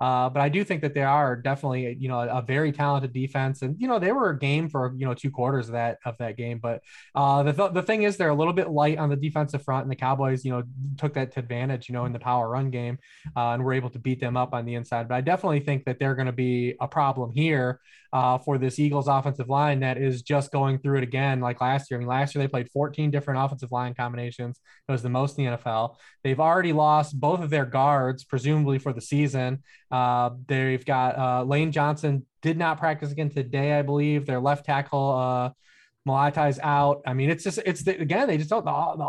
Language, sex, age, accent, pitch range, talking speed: English, male, 20-39, American, 130-150 Hz, 250 wpm